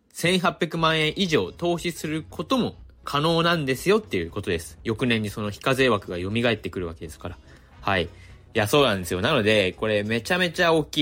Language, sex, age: Japanese, male, 20-39